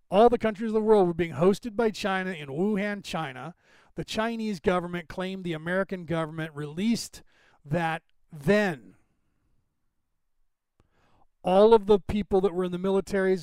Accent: American